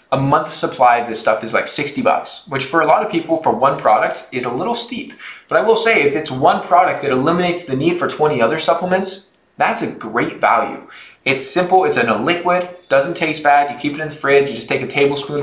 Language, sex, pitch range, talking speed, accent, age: English, male, 120-155 Hz, 245 wpm, American, 20-39